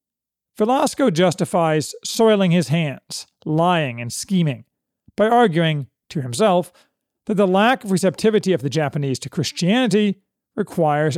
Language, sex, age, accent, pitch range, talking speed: English, male, 40-59, American, 155-210 Hz, 125 wpm